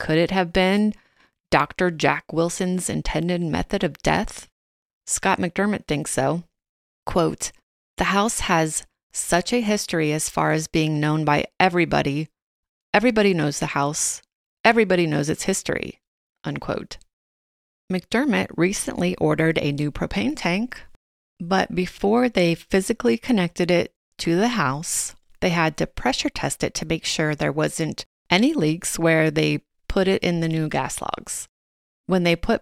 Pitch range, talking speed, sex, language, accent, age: 155-195 Hz, 145 wpm, female, English, American, 30-49